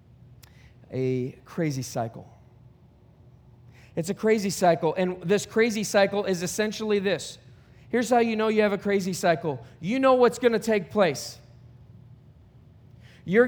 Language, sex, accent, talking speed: English, male, American, 135 wpm